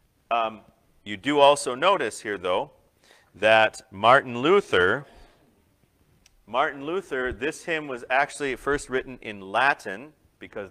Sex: male